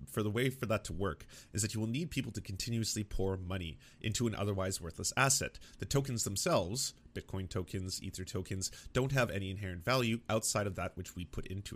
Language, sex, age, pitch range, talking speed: English, male, 30-49, 95-130 Hz, 200 wpm